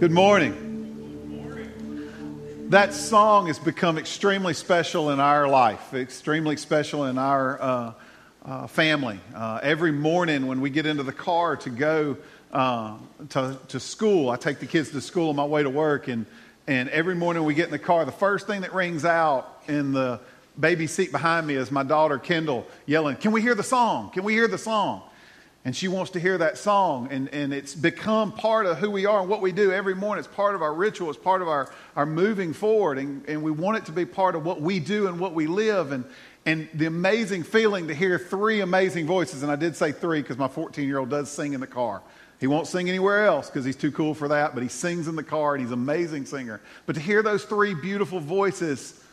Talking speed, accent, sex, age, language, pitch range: 220 wpm, American, male, 40-59, English, 140-190 Hz